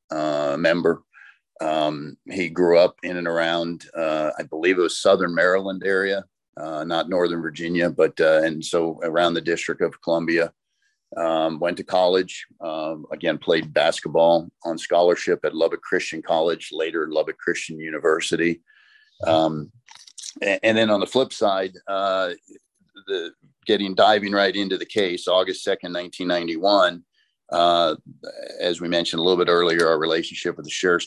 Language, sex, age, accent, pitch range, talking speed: English, male, 50-69, American, 85-95 Hz, 155 wpm